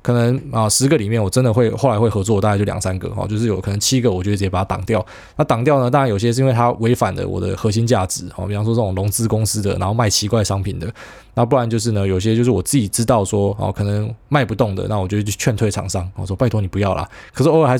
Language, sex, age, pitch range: Chinese, male, 20-39, 100-130 Hz